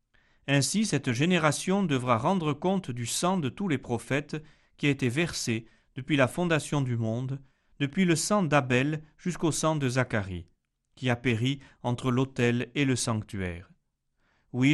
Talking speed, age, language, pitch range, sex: 155 wpm, 40-59, French, 115-155 Hz, male